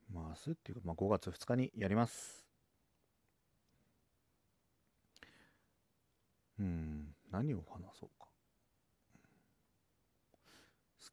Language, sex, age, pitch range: Japanese, male, 40-59, 80-110 Hz